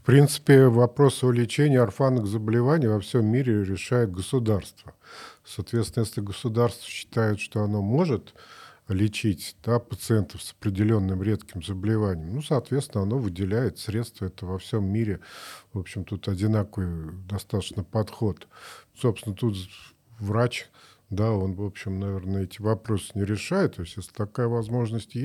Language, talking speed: Russian, 140 wpm